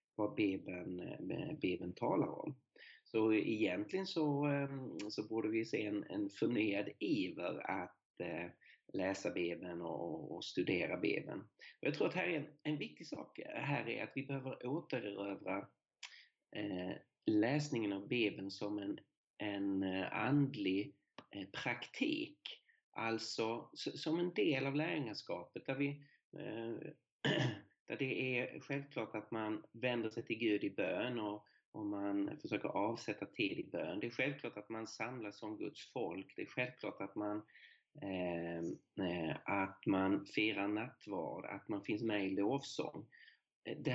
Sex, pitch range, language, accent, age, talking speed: male, 105-145 Hz, Swedish, native, 30-49, 140 wpm